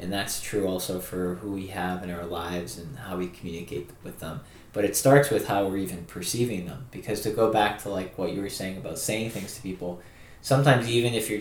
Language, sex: English, male